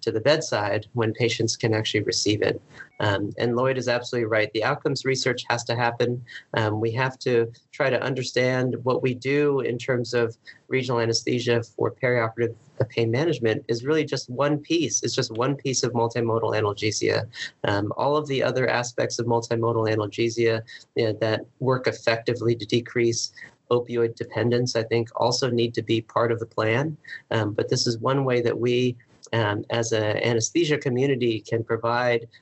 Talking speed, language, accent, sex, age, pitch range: 170 wpm, English, American, male, 40-59, 115-125 Hz